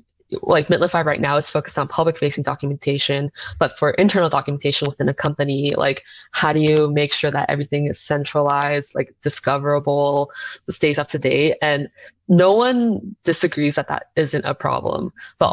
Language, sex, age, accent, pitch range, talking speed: English, female, 20-39, American, 140-165 Hz, 165 wpm